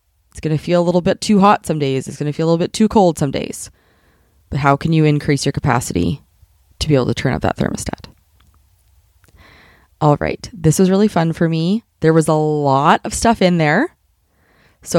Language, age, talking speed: English, 20-39, 215 wpm